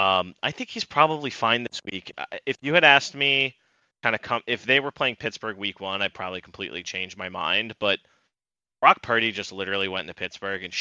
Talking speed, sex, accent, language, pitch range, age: 215 wpm, male, American, English, 95-110 Hz, 20-39